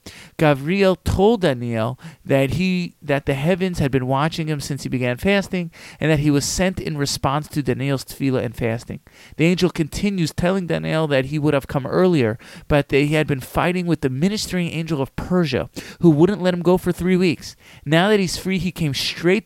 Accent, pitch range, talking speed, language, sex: American, 135-175 Hz, 205 wpm, English, male